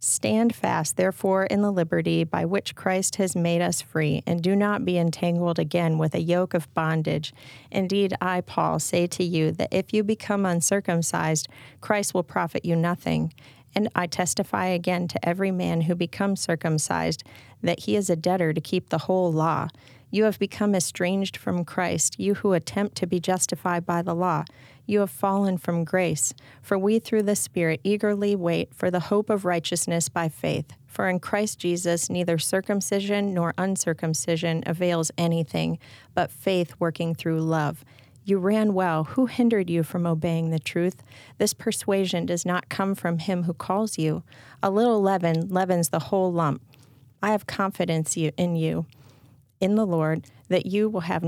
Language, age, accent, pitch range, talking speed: English, 40-59, American, 160-195 Hz, 175 wpm